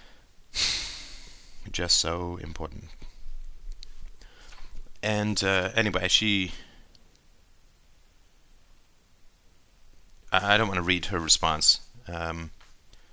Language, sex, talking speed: English, male, 70 wpm